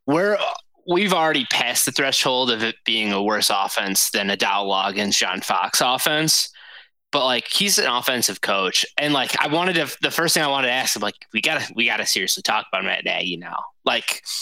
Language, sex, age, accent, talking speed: English, male, 20-39, American, 225 wpm